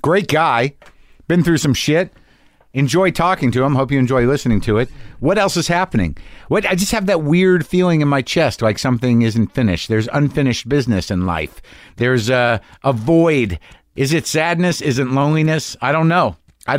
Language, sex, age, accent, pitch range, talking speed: English, male, 50-69, American, 105-155 Hz, 190 wpm